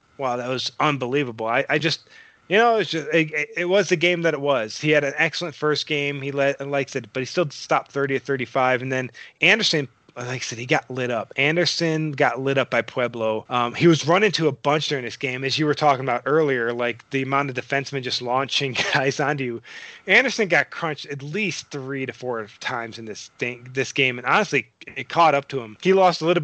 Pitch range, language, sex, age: 125-150 Hz, English, male, 20-39